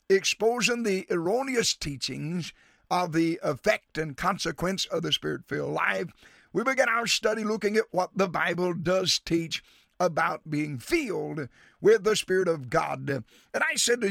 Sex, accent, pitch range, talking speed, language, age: male, American, 160-240 Hz, 155 wpm, English, 50-69